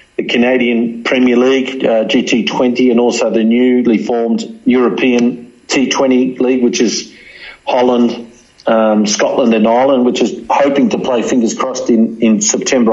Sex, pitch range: male, 115-125 Hz